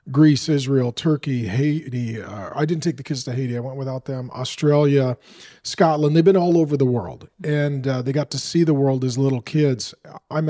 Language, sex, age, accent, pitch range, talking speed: English, male, 40-59, American, 130-155 Hz, 205 wpm